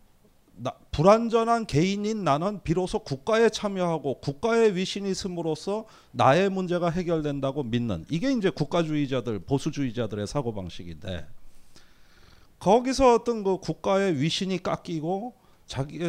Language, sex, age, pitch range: Korean, male, 40-59, 135-200 Hz